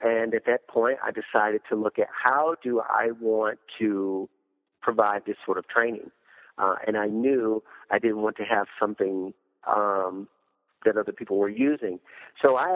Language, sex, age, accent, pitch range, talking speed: English, male, 50-69, American, 100-115 Hz, 175 wpm